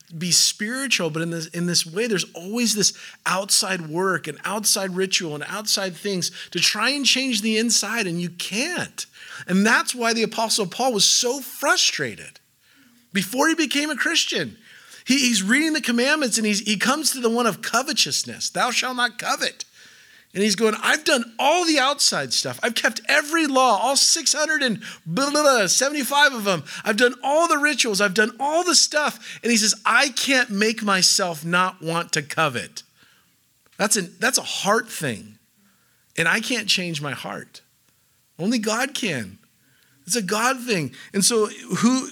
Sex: male